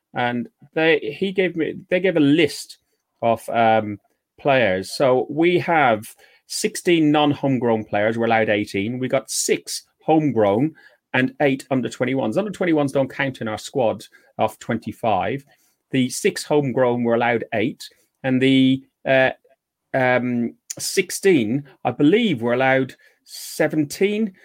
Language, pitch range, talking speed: English, 125-155 Hz, 140 wpm